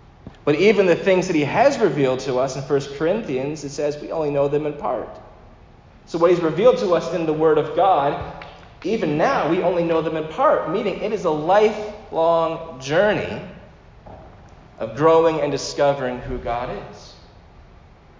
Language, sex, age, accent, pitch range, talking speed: English, male, 30-49, American, 105-150 Hz, 175 wpm